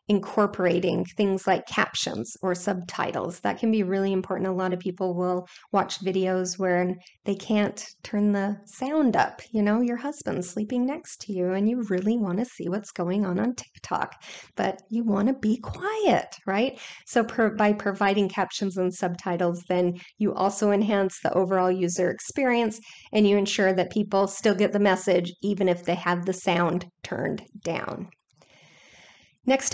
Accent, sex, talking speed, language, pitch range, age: American, female, 165 wpm, English, 185-210 Hz, 30-49